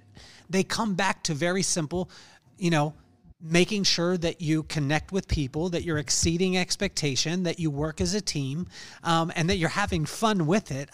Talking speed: 180 wpm